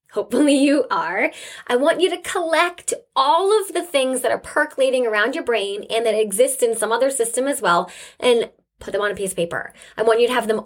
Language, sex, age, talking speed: English, female, 20-39, 230 wpm